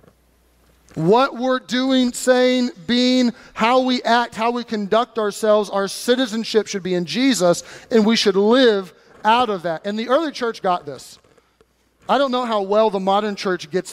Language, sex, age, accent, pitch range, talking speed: English, male, 30-49, American, 190-245 Hz, 170 wpm